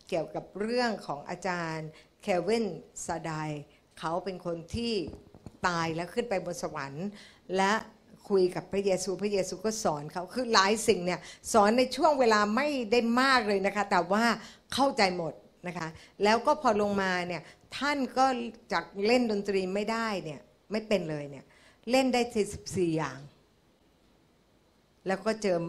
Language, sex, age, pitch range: Thai, female, 60-79, 170-220 Hz